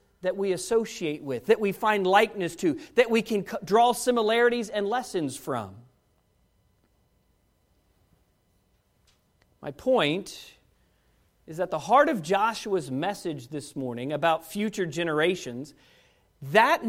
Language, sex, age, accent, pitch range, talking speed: English, male, 40-59, American, 170-265 Hz, 115 wpm